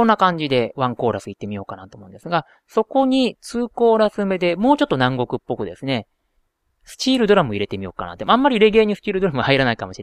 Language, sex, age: Japanese, male, 30-49